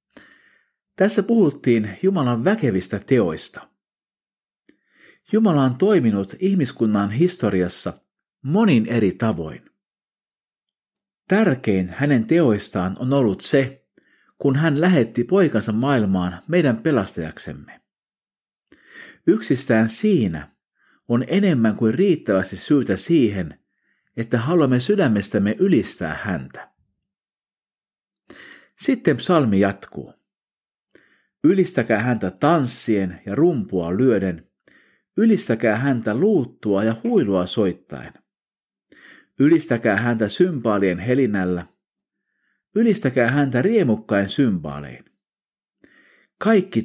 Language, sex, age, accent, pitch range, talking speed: Finnish, male, 50-69, native, 100-145 Hz, 80 wpm